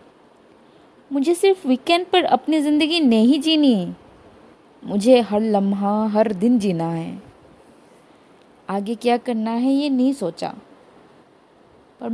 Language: Hindi